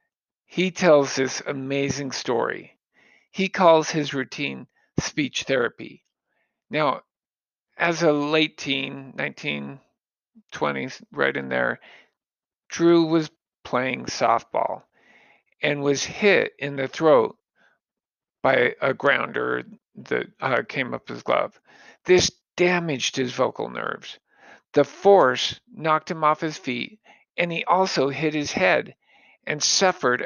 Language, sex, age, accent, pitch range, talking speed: English, male, 50-69, American, 135-170 Hz, 115 wpm